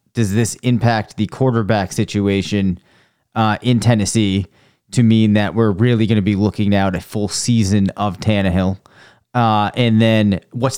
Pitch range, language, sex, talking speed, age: 105-130 Hz, English, male, 160 wpm, 30-49